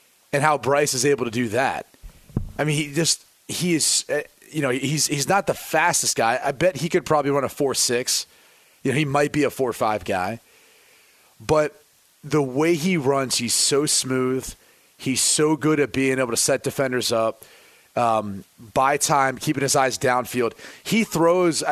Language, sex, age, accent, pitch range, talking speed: English, male, 30-49, American, 130-165 Hz, 170 wpm